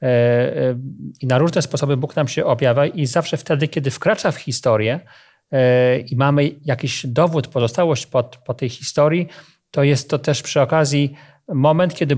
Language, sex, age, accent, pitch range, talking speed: Polish, male, 40-59, native, 130-155 Hz, 155 wpm